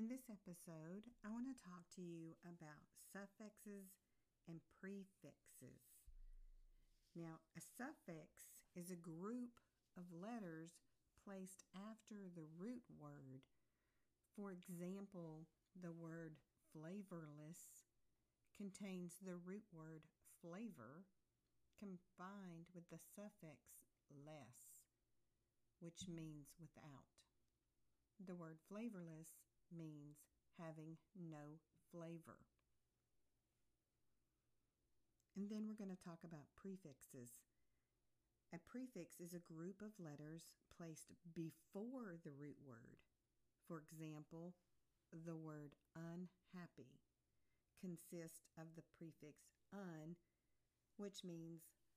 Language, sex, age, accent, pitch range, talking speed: English, female, 50-69, American, 155-190 Hz, 95 wpm